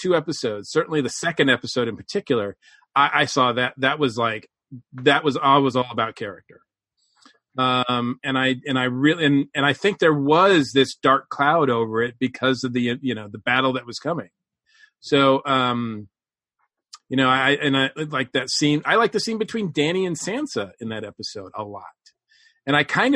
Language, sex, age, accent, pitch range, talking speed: English, male, 40-59, American, 125-160 Hz, 195 wpm